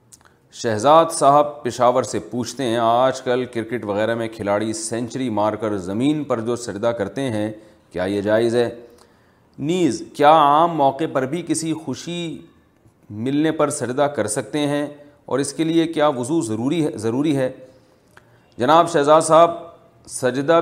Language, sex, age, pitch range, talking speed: Urdu, male, 40-59, 105-130 Hz, 155 wpm